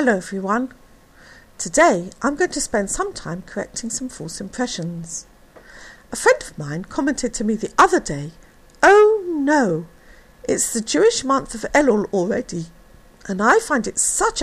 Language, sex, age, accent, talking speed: English, female, 50-69, British, 155 wpm